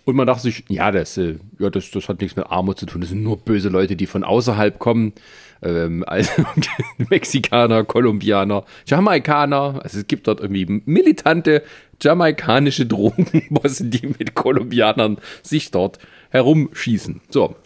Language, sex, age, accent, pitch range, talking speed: German, male, 40-59, German, 100-140 Hz, 150 wpm